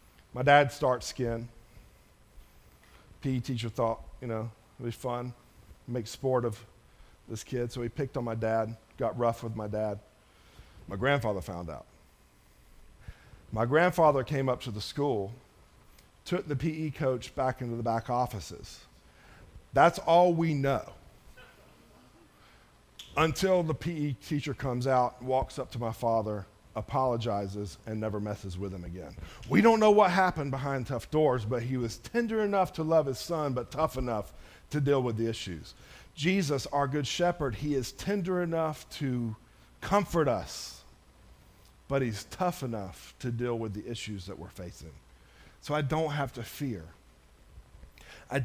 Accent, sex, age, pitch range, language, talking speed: American, male, 40-59, 105-145 Hz, English, 155 wpm